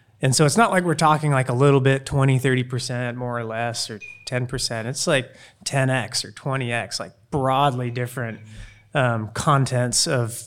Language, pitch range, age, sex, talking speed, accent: English, 125-150 Hz, 20-39, male, 165 wpm, American